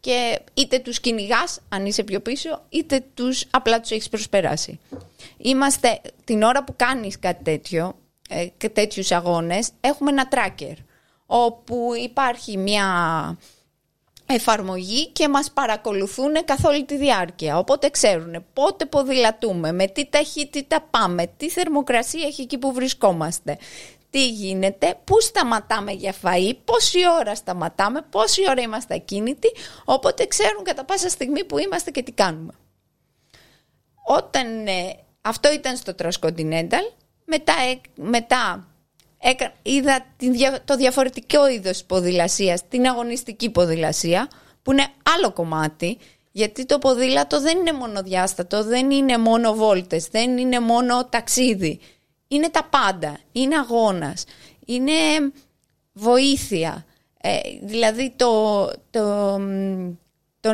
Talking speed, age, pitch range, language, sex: 130 wpm, 20-39, 200-275 Hz, Greek, female